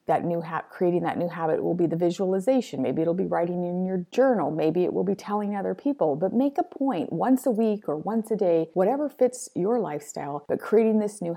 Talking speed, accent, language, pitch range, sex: 230 wpm, American, English, 165-220 Hz, female